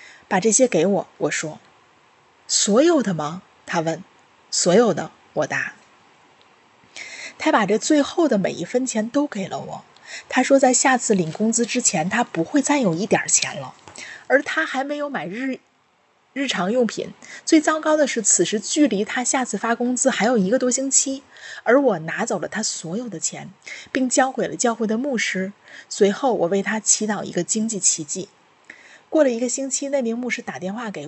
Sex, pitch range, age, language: female, 195-260 Hz, 20-39, Chinese